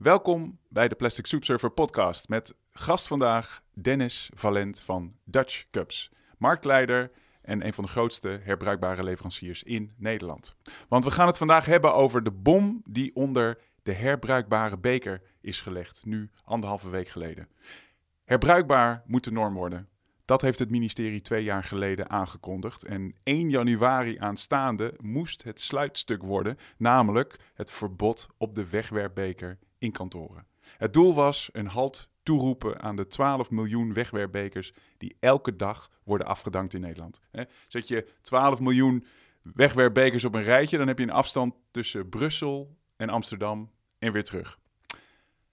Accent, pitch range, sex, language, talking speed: Dutch, 100-130 Hz, male, Dutch, 150 wpm